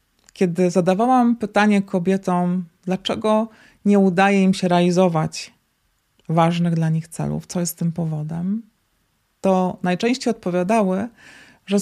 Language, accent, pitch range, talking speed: Polish, native, 175-195 Hz, 110 wpm